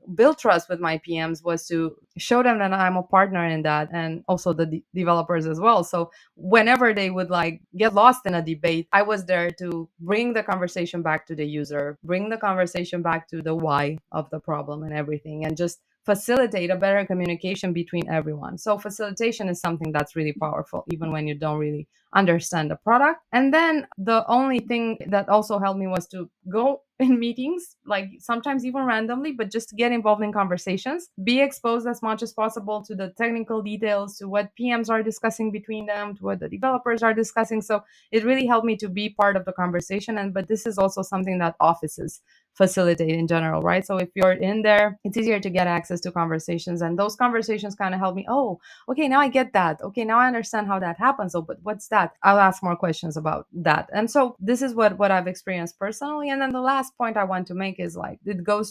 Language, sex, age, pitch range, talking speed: English, female, 20-39, 170-225 Hz, 215 wpm